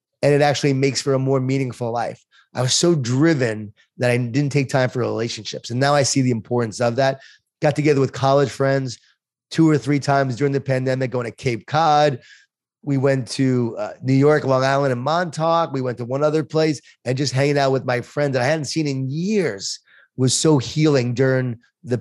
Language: English